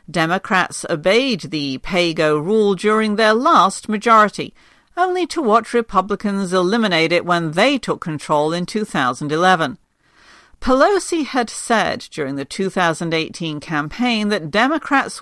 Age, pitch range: 50-69, 170-245 Hz